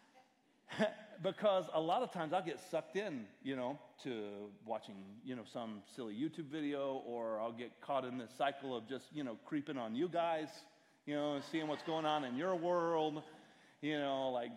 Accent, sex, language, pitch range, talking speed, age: American, male, English, 120-160 Hz, 190 wpm, 40-59